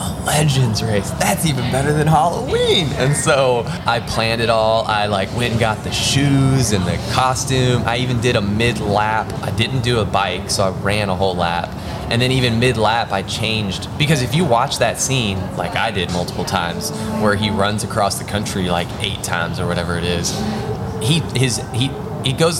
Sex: male